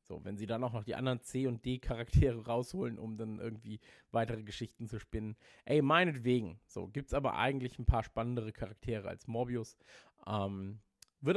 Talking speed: 185 wpm